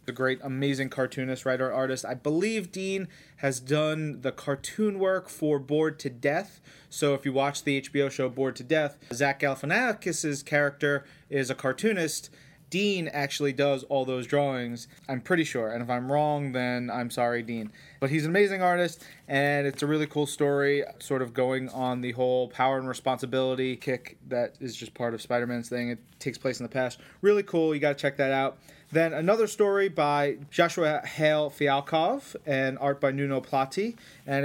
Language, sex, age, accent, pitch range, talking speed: English, male, 30-49, American, 125-150 Hz, 185 wpm